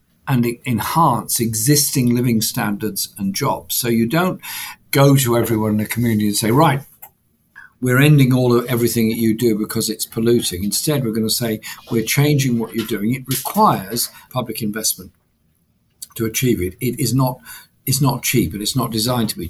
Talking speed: 180 wpm